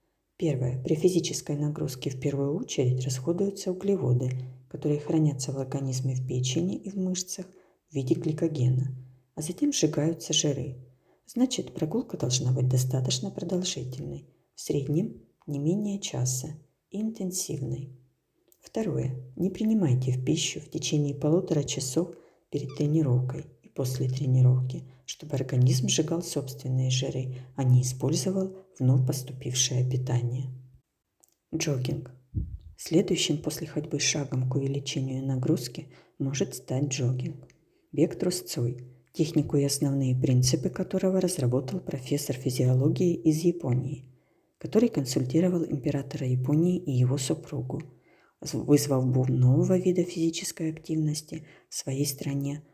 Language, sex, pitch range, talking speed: Ukrainian, female, 130-165 Hz, 115 wpm